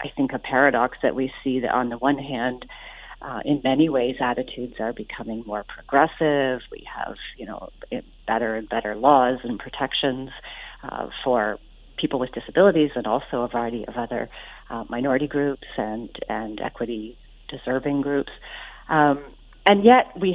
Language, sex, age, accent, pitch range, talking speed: English, female, 40-59, American, 120-150 Hz, 160 wpm